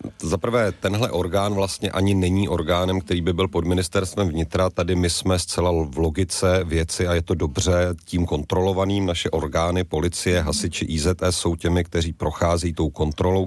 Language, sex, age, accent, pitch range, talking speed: Czech, male, 40-59, native, 85-95 Hz, 170 wpm